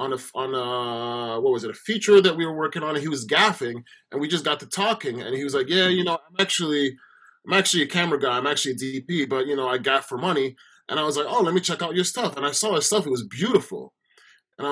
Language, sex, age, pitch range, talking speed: English, male, 20-39, 135-190 Hz, 285 wpm